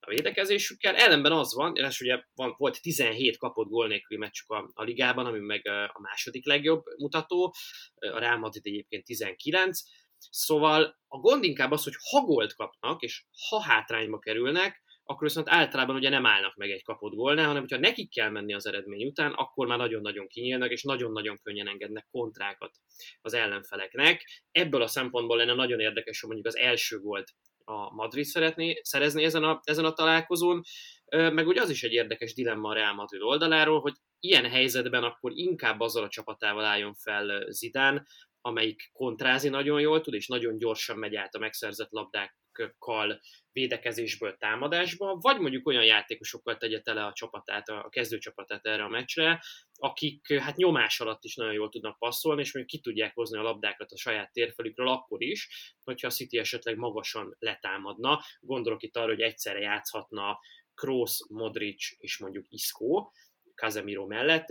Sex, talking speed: male, 165 wpm